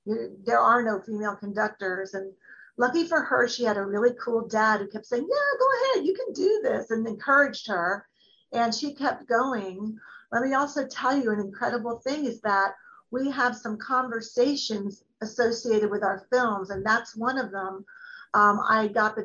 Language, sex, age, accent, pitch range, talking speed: English, female, 40-59, American, 215-260 Hz, 185 wpm